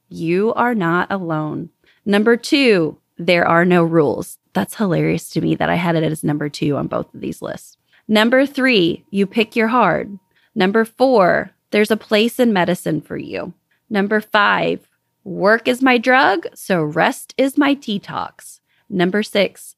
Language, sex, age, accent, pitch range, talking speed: English, female, 20-39, American, 180-255 Hz, 165 wpm